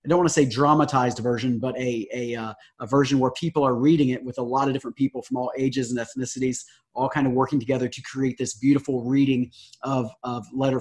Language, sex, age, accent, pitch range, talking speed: English, male, 30-49, American, 125-145 Hz, 235 wpm